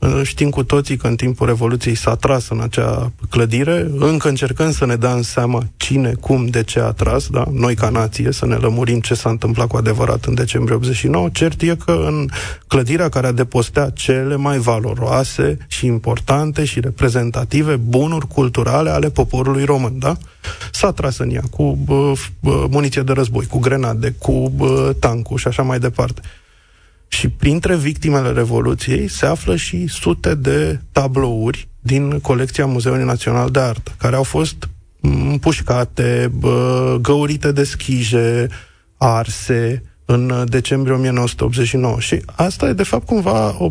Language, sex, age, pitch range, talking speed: Romanian, male, 30-49, 115-140 Hz, 150 wpm